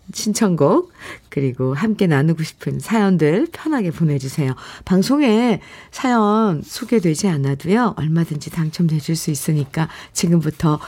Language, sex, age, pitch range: Korean, female, 50-69, 150-215 Hz